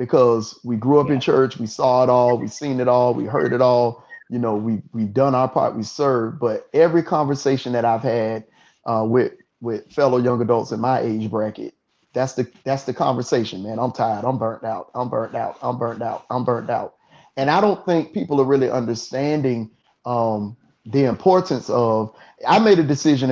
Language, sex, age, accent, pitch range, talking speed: English, male, 30-49, American, 120-140 Hz, 205 wpm